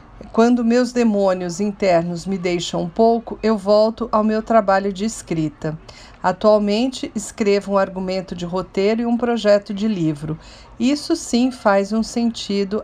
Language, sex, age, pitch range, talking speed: Portuguese, female, 40-59, 195-240 Hz, 145 wpm